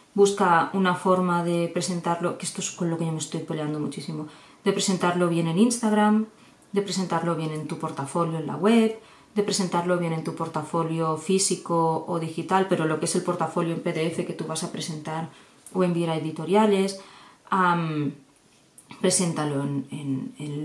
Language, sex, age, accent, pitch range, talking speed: Spanish, female, 20-39, Spanish, 170-205 Hz, 175 wpm